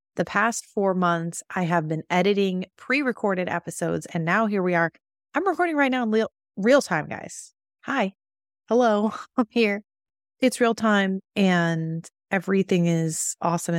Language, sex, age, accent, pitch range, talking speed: English, female, 30-49, American, 160-195 Hz, 150 wpm